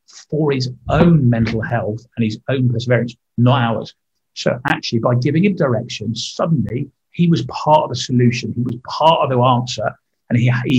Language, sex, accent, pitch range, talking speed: English, male, British, 115-150 Hz, 185 wpm